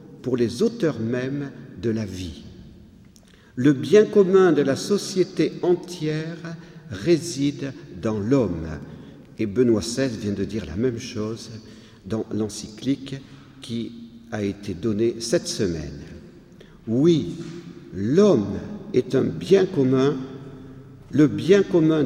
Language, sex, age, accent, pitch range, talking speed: French, male, 50-69, French, 115-170 Hz, 115 wpm